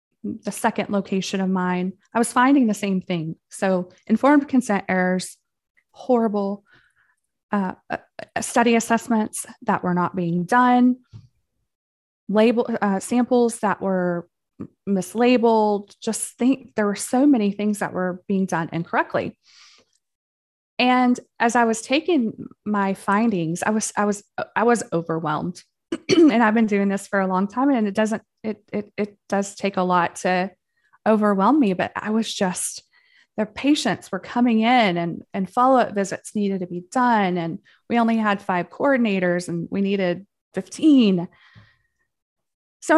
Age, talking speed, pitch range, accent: 20-39, 150 wpm, 185-235 Hz, American